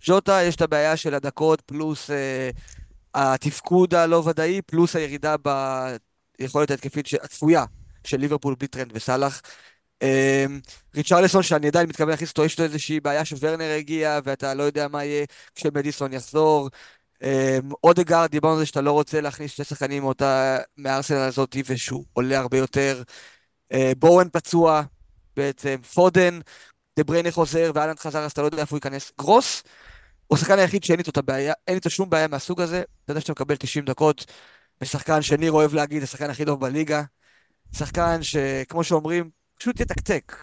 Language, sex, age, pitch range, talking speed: Hebrew, male, 20-39, 135-165 Hz, 140 wpm